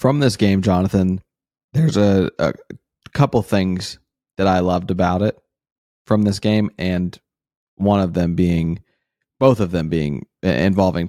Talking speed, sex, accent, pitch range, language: 150 wpm, male, American, 90-100 Hz, English